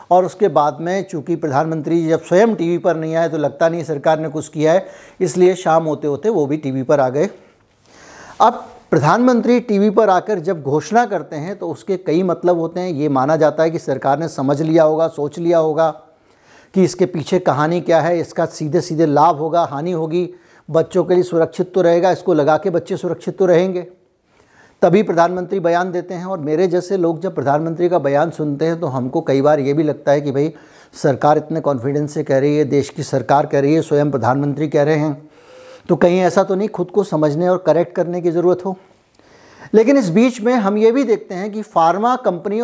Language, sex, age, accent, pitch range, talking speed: Hindi, male, 60-79, native, 155-190 Hz, 215 wpm